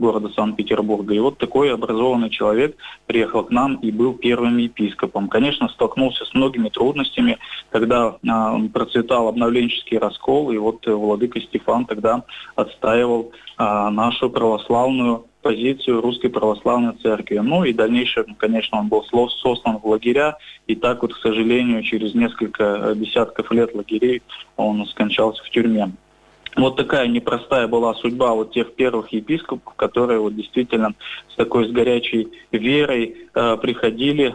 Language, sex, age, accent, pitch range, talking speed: Russian, male, 20-39, native, 110-130 Hz, 140 wpm